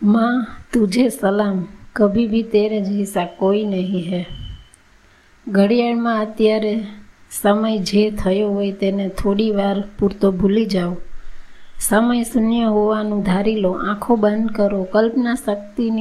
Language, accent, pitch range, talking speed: Gujarati, native, 200-220 Hz, 110 wpm